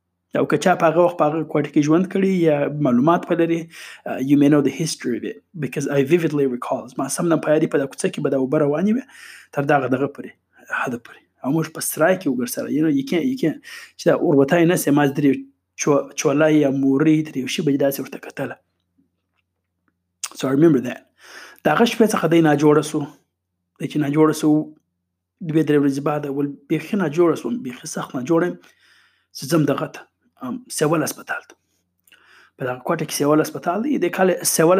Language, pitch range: Urdu, 140-175 Hz